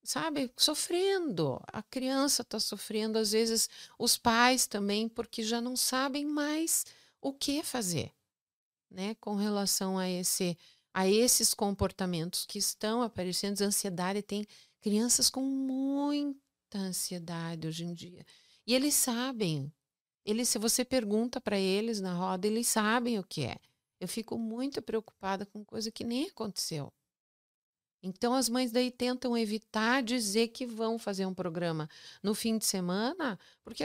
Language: Portuguese